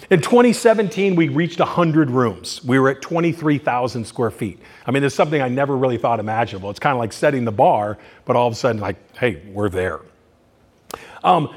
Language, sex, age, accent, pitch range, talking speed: English, male, 40-59, American, 120-165 Hz, 195 wpm